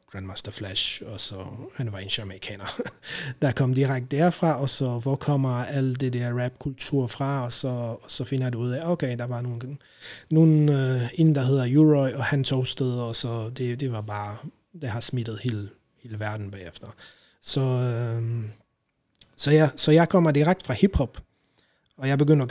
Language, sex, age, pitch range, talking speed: Danish, male, 30-49, 115-145 Hz, 180 wpm